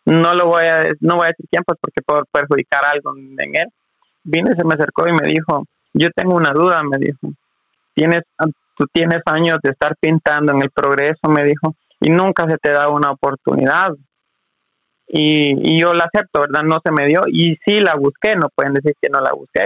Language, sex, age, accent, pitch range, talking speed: Spanish, male, 30-49, Mexican, 145-165 Hz, 210 wpm